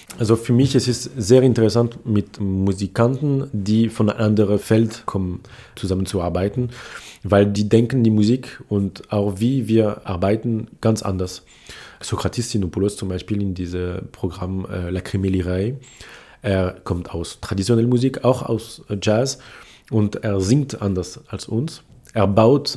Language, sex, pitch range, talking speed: German, male, 100-120 Hz, 140 wpm